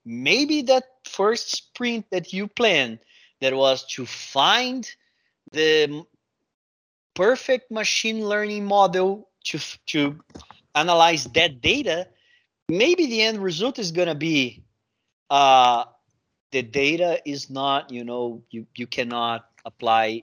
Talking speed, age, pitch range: 115 wpm, 30-49, 120-195 Hz